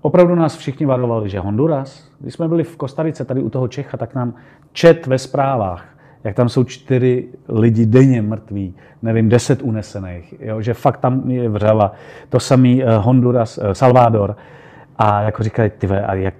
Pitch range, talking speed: 105-135 Hz, 170 wpm